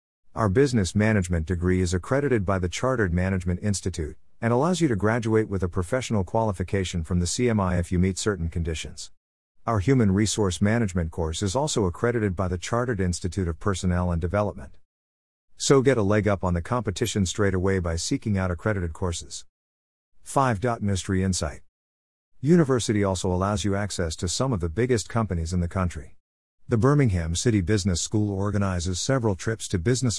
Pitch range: 90-110 Hz